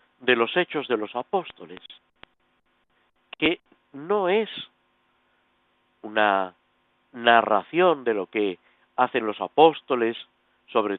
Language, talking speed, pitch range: Spanish, 100 wpm, 105-160 Hz